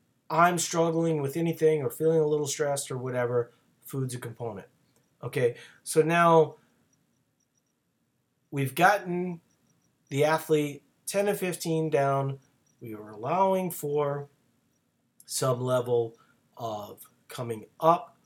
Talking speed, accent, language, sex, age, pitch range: 110 wpm, American, English, male, 30-49, 125-155 Hz